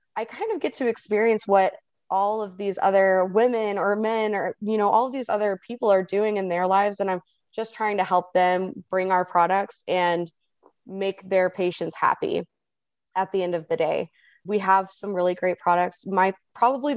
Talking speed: 200 wpm